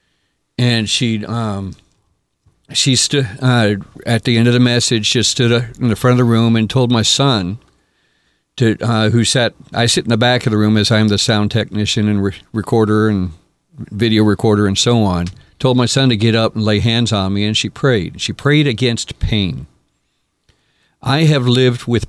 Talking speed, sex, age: 195 wpm, male, 50-69